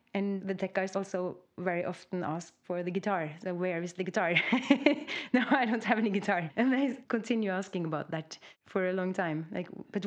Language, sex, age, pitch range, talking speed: English, female, 30-49, 180-230 Hz, 195 wpm